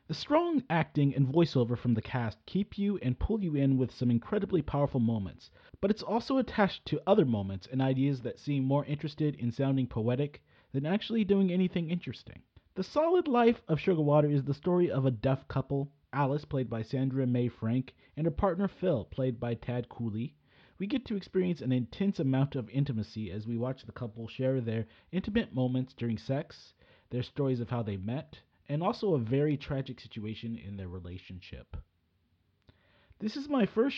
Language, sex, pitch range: English, male, 115-155 Hz